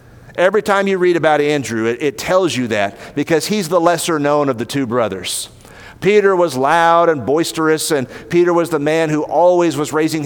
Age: 40-59